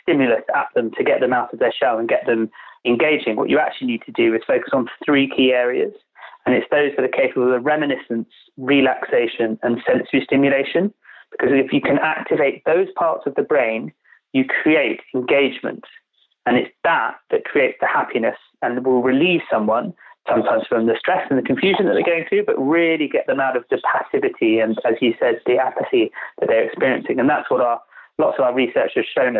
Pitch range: 125-180 Hz